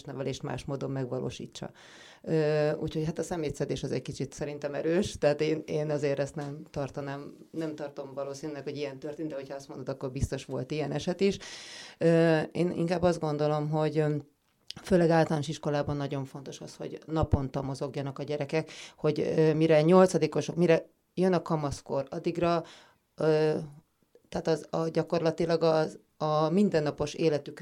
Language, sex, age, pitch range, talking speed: Hungarian, female, 30-49, 145-170 Hz, 145 wpm